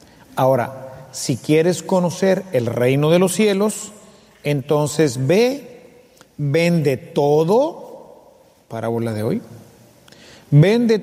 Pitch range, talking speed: 155-215 Hz, 90 wpm